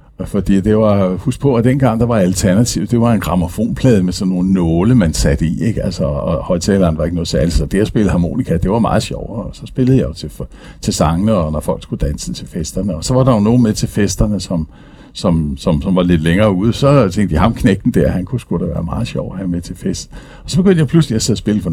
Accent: native